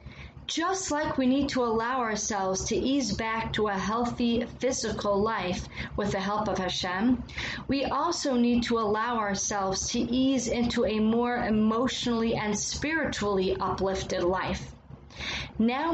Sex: female